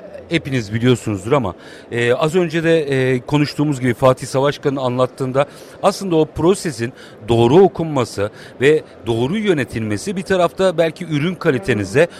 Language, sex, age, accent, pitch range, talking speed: Turkish, male, 50-69, native, 135-180 Hz, 130 wpm